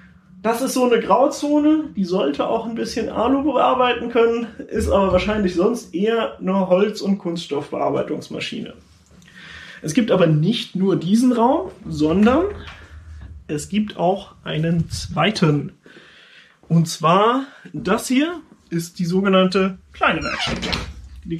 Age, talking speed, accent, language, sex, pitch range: 30-49, 125 wpm, German, German, male, 180-235 Hz